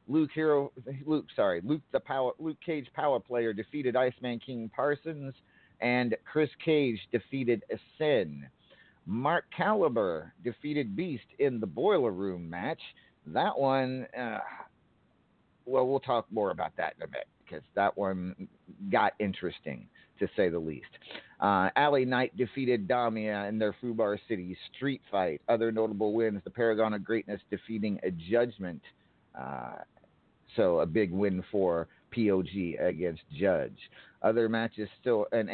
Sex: male